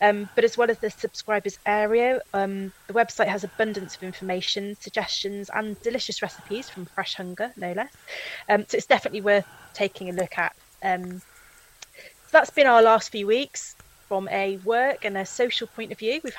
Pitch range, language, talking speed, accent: 185-225 Hz, English, 185 wpm, British